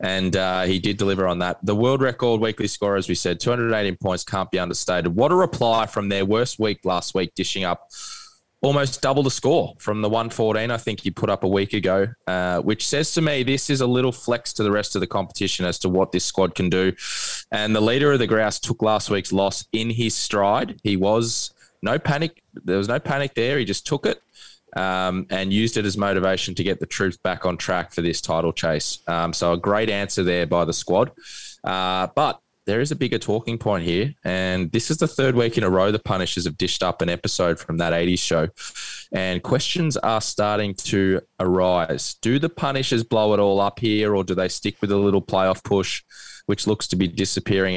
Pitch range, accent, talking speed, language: 95-115 Hz, Australian, 225 wpm, English